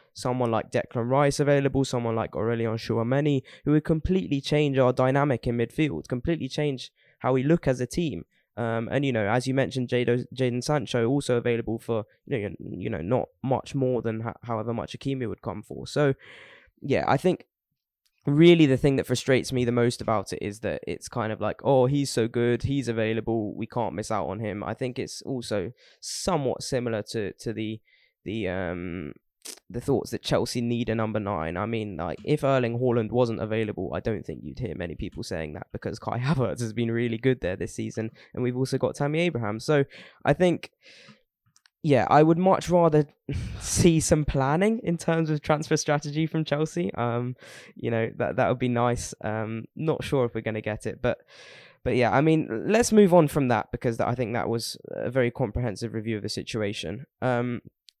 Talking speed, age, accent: 205 wpm, 10-29, British